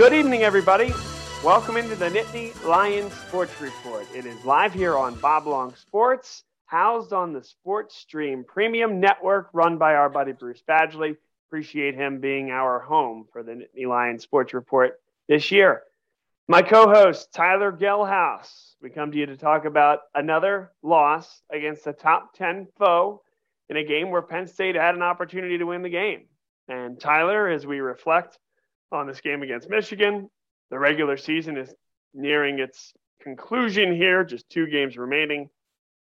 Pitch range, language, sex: 140-200 Hz, English, male